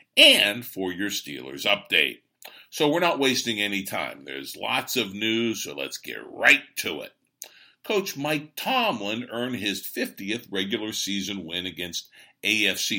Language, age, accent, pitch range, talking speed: English, 60-79, American, 100-150 Hz, 150 wpm